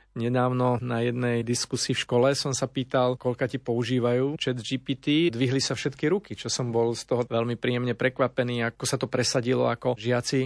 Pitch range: 115-130 Hz